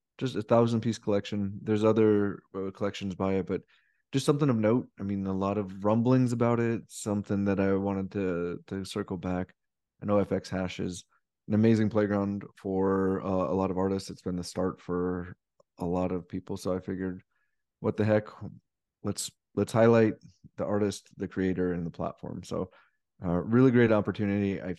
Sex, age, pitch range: male, 20-39, 95-110 Hz